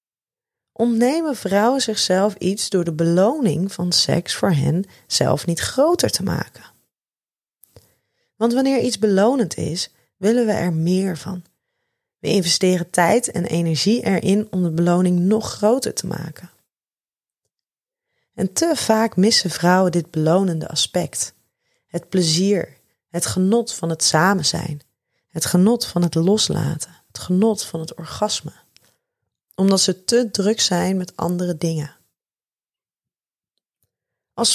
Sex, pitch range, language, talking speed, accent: female, 170-225 Hz, Dutch, 130 wpm, Dutch